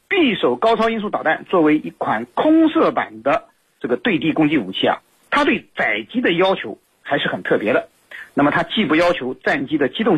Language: Chinese